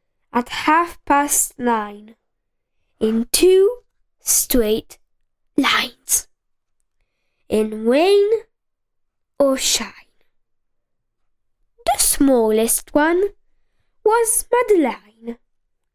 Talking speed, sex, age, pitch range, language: 65 wpm, female, 10-29, 235-365 Hz, Italian